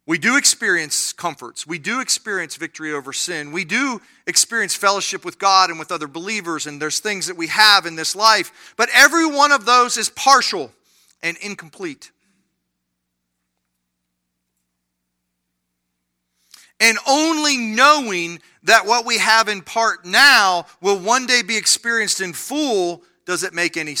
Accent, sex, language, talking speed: American, male, English, 150 wpm